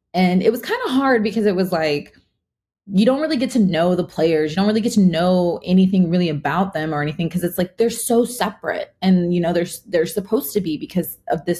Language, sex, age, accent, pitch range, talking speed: English, female, 20-39, American, 155-195 Hz, 245 wpm